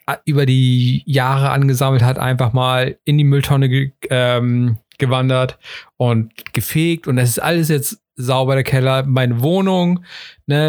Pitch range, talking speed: 120-150 Hz, 145 wpm